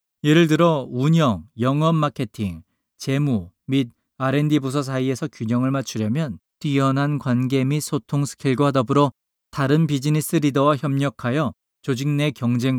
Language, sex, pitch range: Korean, male, 120-150 Hz